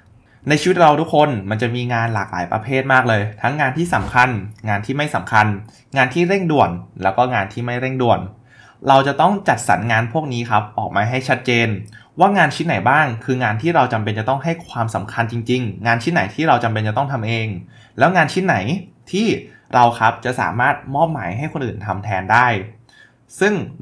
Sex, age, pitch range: male, 20-39, 110-140 Hz